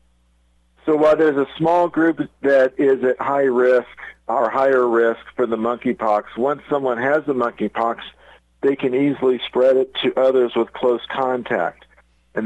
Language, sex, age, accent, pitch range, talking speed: English, male, 50-69, American, 100-125 Hz, 160 wpm